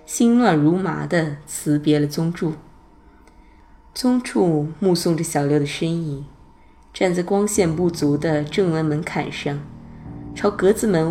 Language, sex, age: Chinese, female, 20-39